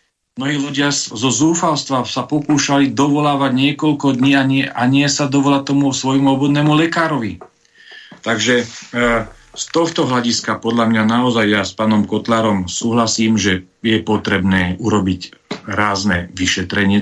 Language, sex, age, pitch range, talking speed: Slovak, male, 40-59, 95-120 Hz, 140 wpm